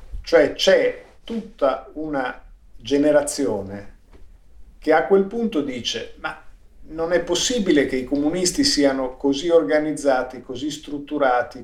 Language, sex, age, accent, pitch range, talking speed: Italian, male, 50-69, native, 130-170 Hz, 115 wpm